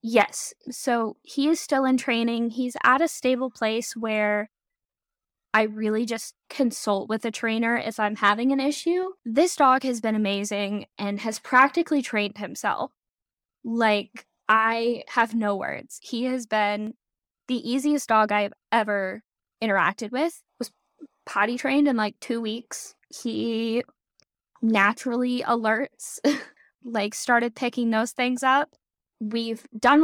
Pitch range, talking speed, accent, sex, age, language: 210-260 Hz, 135 wpm, American, female, 10-29, English